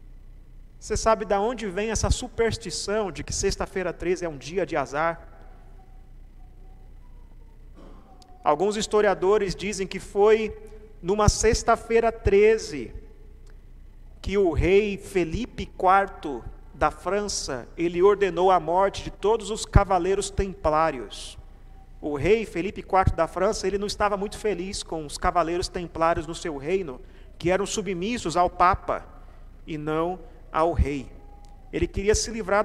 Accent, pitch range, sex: Brazilian, 175-225 Hz, male